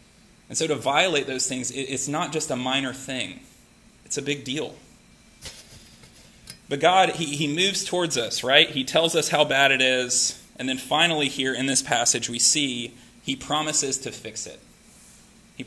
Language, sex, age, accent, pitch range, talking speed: English, male, 30-49, American, 130-155 Hz, 170 wpm